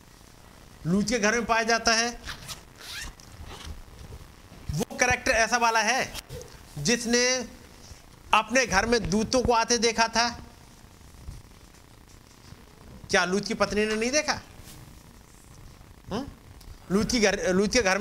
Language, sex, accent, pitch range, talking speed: Hindi, male, native, 190-250 Hz, 115 wpm